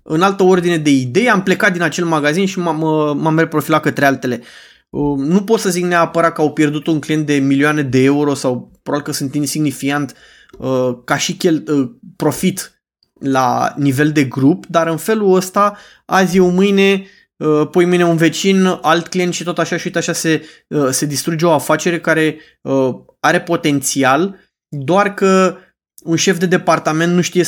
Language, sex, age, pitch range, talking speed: Romanian, male, 20-39, 150-170 Hz, 185 wpm